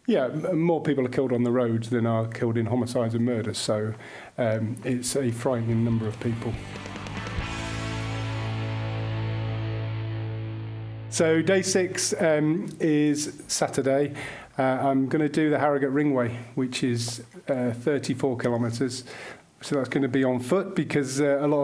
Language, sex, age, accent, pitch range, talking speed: English, male, 40-59, British, 115-135 Hz, 145 wpm